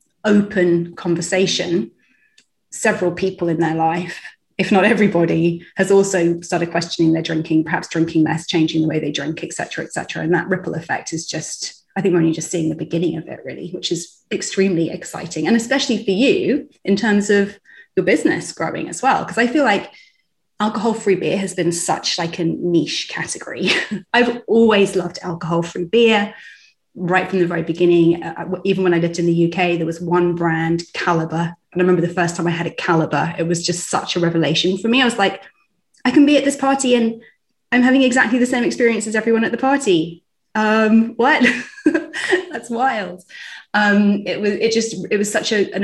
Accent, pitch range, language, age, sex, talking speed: British, 170-220 Hz, English, 30-49, female, 195 wpm